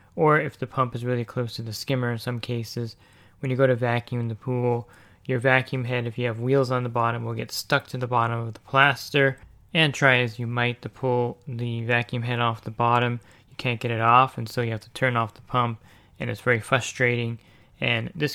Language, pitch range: English, 115-130 Hz